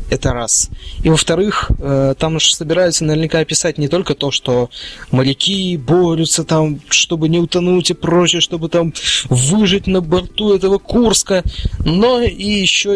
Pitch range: 125-175 Hz